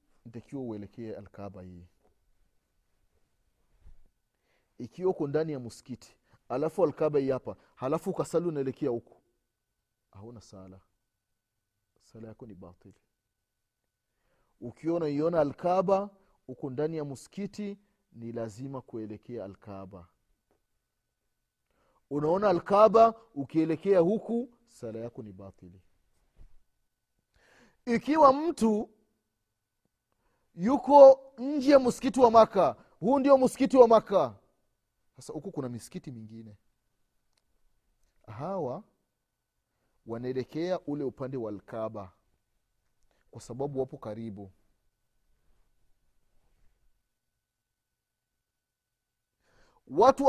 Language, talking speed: Swahili, 80 wpm